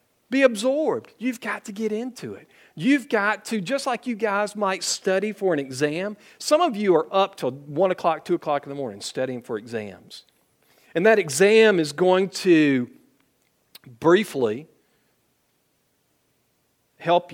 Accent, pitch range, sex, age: American, 130-210 Hz, male, 50-69